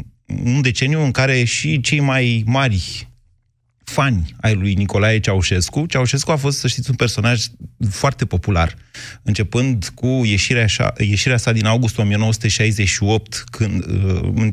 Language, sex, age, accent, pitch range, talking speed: Romanian, male, 30-49, native, 110-150 Hz, 130 wpm